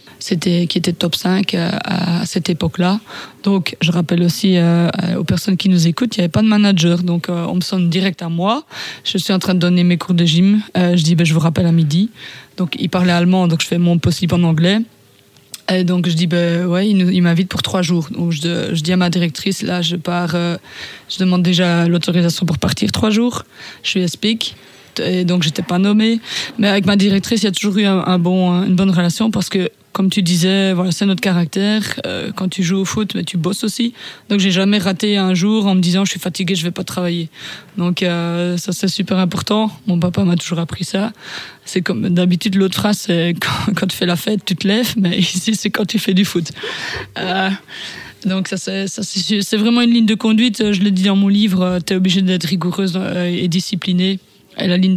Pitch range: 175-195 Hz